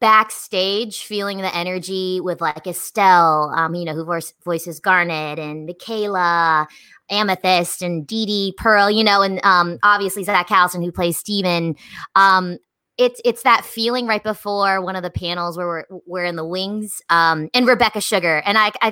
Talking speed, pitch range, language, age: 175 wpm, 170-205 Hz, English, 20-39